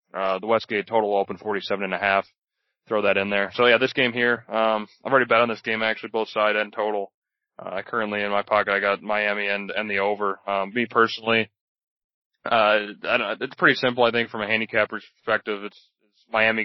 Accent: American